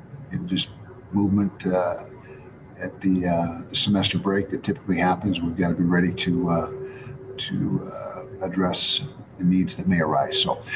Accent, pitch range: American, 95-115 Hz